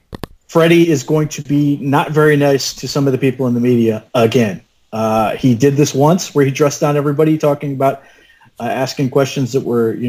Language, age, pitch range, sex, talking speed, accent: English, 40-59, 120-150 Hz, male, 210 wpm, American